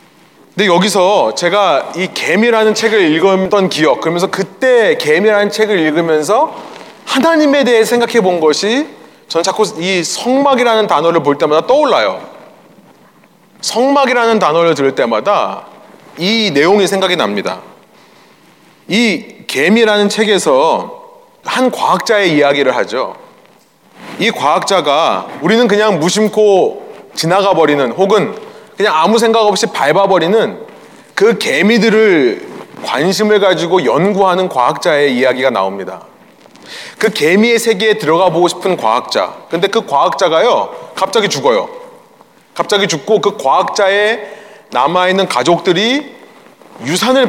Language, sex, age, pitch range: Korean, male, 30-49, 185-235 Hz